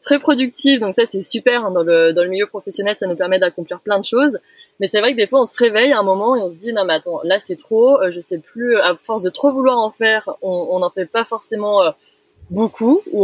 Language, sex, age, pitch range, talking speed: French, female, 20-39, 195-245 Hz, 280 wpm